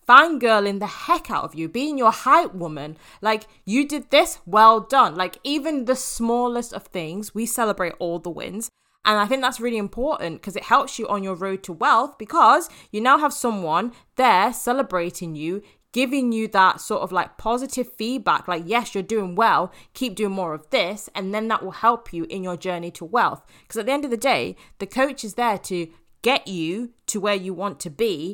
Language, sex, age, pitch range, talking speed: English, female, 20-39, 180-240 Hz, 210 wpm